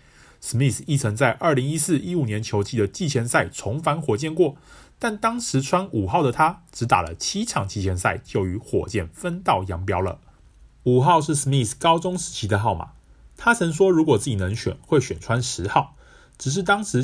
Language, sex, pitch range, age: Chinese, male, 105-165 Hz, 30-49